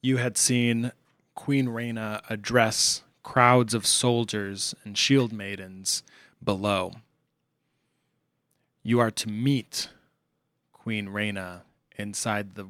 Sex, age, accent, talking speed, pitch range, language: male, 20-39, American, 100 wpm, 105-140 Hz, English